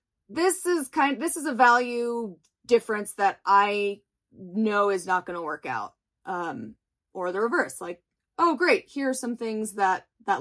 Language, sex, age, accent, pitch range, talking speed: English, female, 20-39, American, 200-260 Hz, 180 wpm